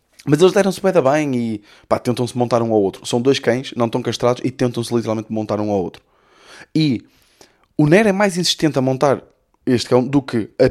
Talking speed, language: 215 wpm, Portuguese